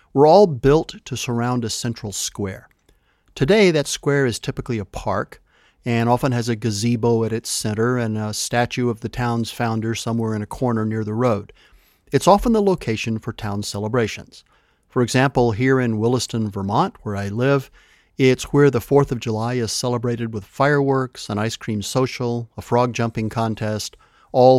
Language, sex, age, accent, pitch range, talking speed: English, male, 50-69, American, 110-130 Hz, 175 wpm